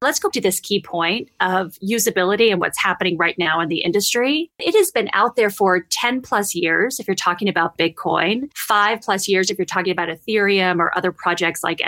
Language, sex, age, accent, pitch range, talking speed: English, female, 30-49, American, 190-250 Hz, 210 wpm